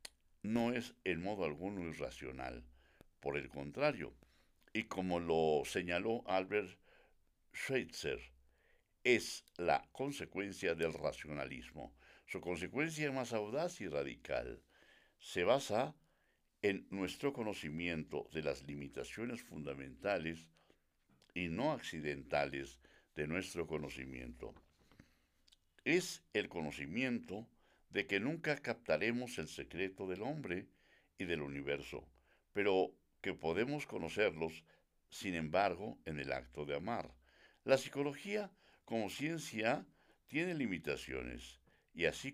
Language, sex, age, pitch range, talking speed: Spanish, male, 60-79, 75-110 Hz, 105 wpm